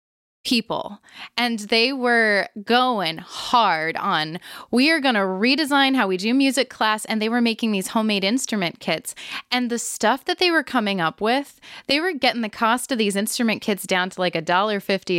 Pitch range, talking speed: 190-235 Hz, 190 wpm